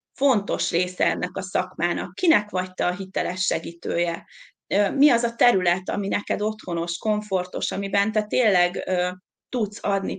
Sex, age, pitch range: female, 30-49, 195-225 Hz